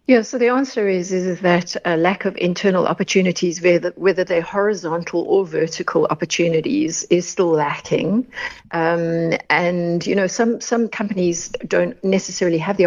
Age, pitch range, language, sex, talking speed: 60-79, 165-195 Hz, English, female, 160 wpm